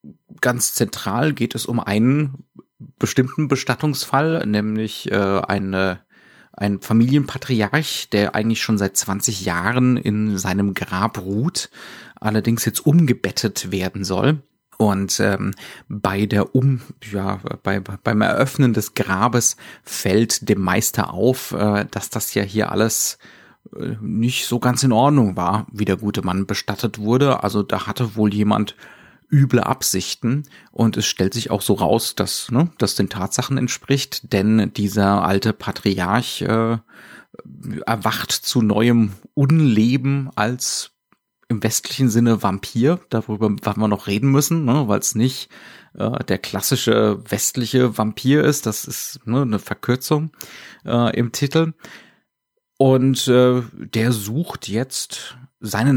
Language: German